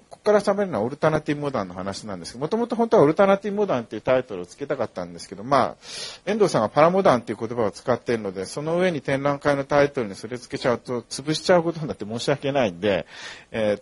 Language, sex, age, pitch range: Japanese, male, 40-59, 105-155 Hz